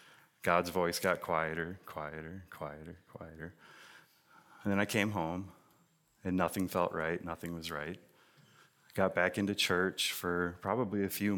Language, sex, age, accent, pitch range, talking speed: English, male, 30-49, American, 90-110 Hz, 150 wpm